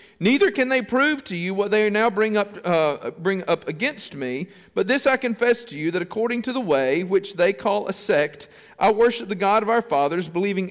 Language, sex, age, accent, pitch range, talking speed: English, male, 40-59, American, 175-230 Hz, 230 wpm